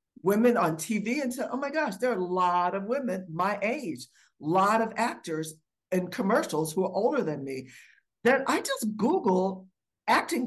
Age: 60-79